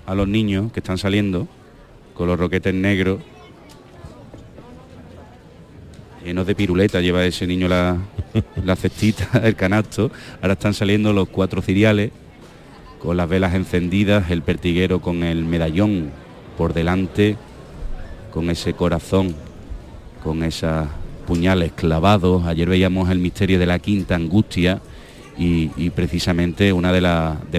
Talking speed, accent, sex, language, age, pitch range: 130 wpm, Spanish, male, Spanish, 30-49, 85-100 Hz